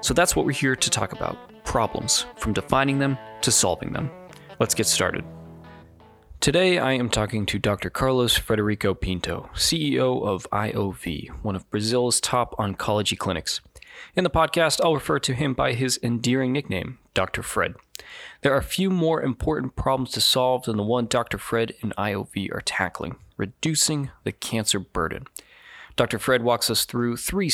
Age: 20-39